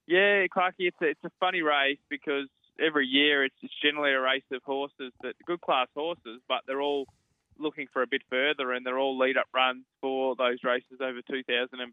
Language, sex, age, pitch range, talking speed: English, male, 20-39, 120-140 Hz, 215 wpm